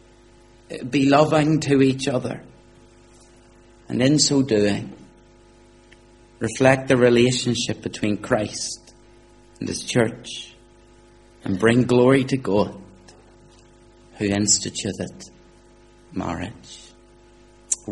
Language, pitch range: English, 100-120 Hz